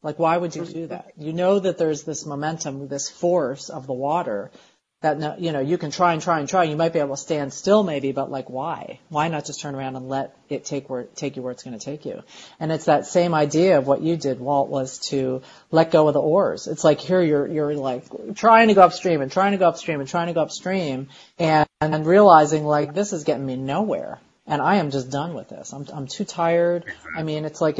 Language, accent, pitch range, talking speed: English, American, 140-180 Hz, 255 wpm